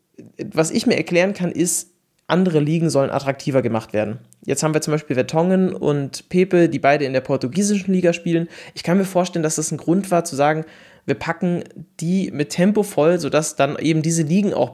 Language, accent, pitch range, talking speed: German, German, 140-175 Hz, 205 wpm